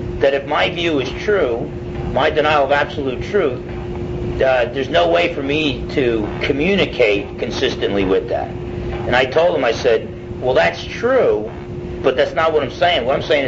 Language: English